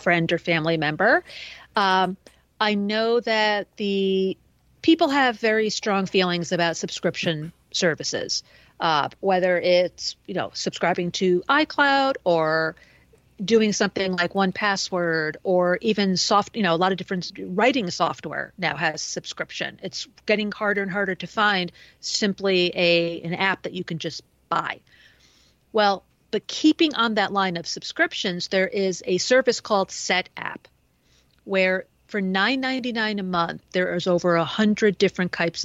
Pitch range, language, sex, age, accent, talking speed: 180-215 Hz, English, female, 40-59, American, 145 wpm